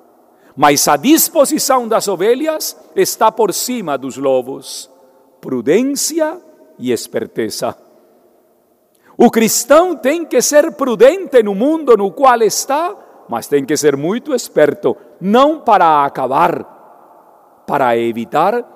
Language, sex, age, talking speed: Portuguese, male, 50-69, 110 wpm